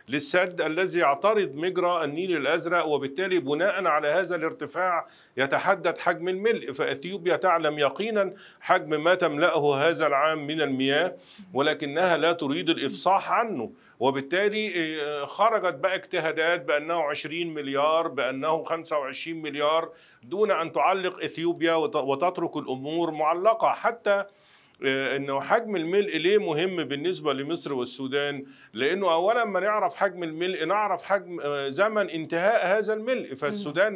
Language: Arabic